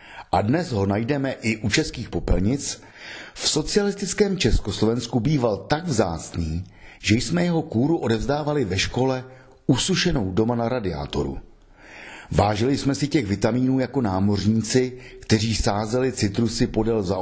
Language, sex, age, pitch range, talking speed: Czech, male, 50-69, 95-130 Hz, 125 wpm